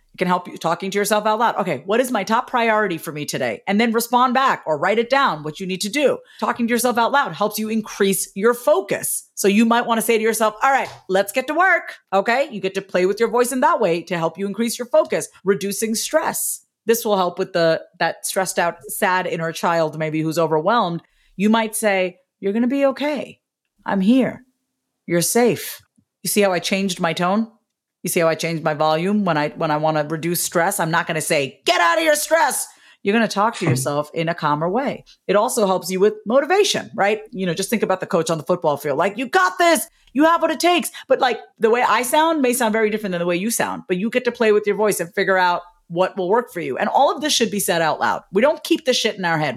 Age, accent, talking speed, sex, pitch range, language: 40-59, American, 260 wpm, female, 180-245 Hz, English